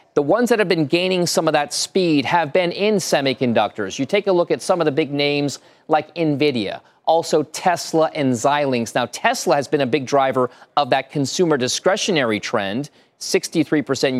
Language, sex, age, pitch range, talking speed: English, male, 40-59, 135-170 Hz, 180 wpm